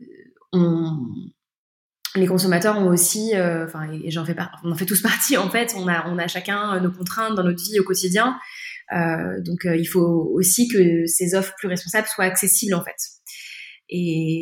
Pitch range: 175-210 Hz